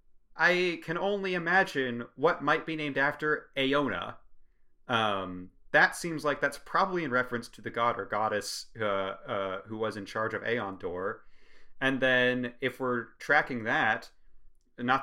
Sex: male